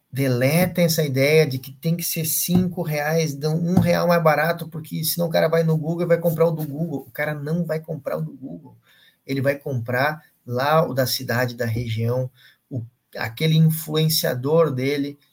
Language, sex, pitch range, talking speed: Portuguese, male, 130-165 Hz, 185 wpm